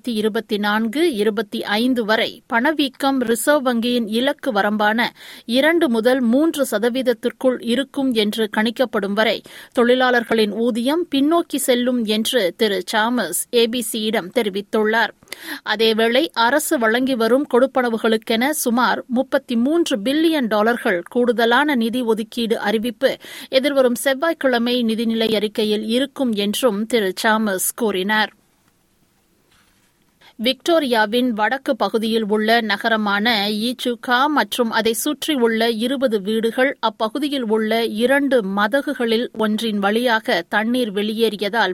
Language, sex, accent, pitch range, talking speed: Tamil, female, native, 220-260 Hz, 100 wpm